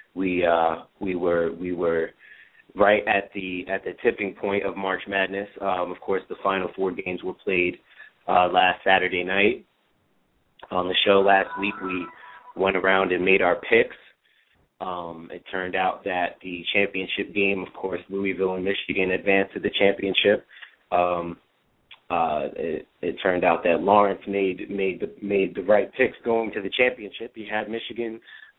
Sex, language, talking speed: male, English, 170 wpm